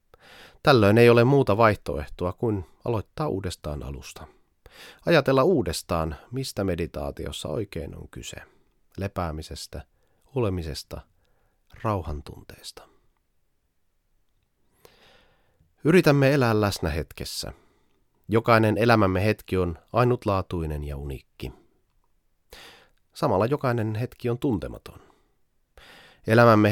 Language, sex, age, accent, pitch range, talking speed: Finnish, male, 30-49, native, 85-115 Hz, 80 wpm